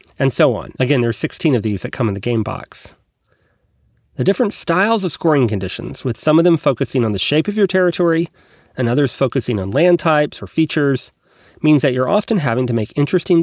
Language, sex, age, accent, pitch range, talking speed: English, male, 30-49, American, 115-160 Hz, 215 wpm